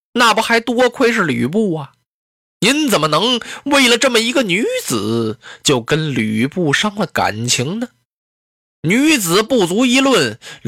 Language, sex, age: Chinese, male, 20-39